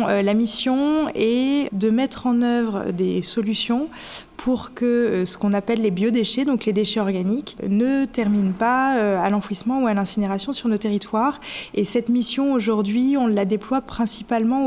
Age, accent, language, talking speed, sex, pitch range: 20-39, French, French, 160 wpm, female, 190-230 Hz